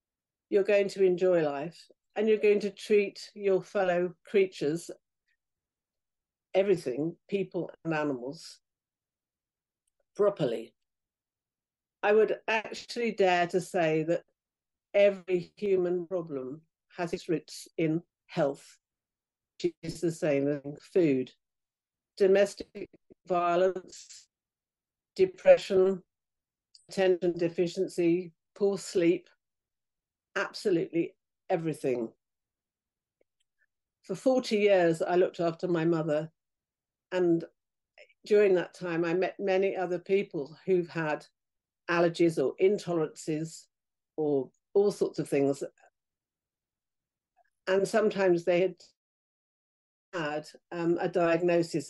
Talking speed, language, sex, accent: 95 wpm, English, female, British